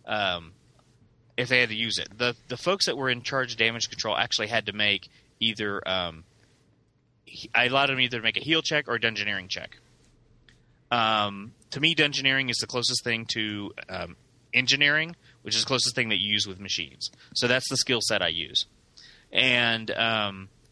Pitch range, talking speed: 105-130 Hz, 195 wpm